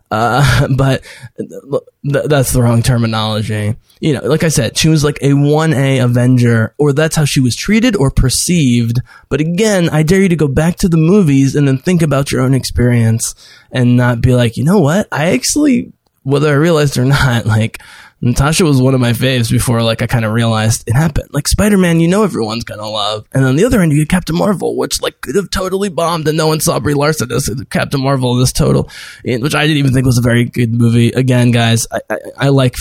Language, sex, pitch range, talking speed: English, male, 115-150 Hz, 225 wpm